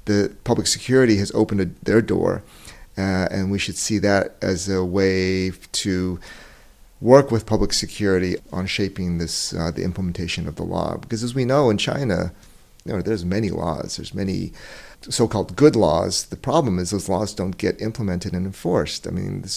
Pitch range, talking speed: 95-110 Hz, 185 wpm